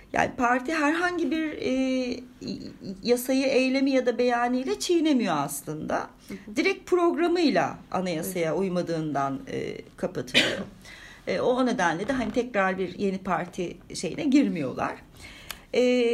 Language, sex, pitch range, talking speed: Turkish, female, 175-250 Hz, 110 wpm